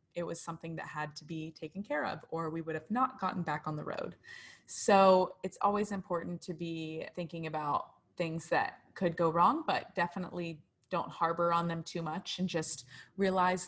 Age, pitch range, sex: 20-39, 160-195 Hz, female